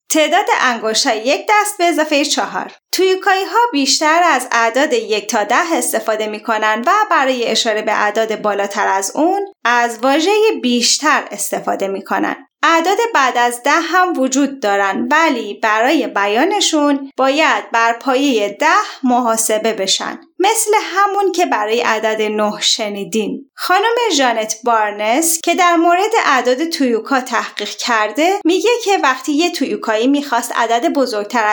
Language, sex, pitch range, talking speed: Persian, female, 225-345 Hz, 140 wpm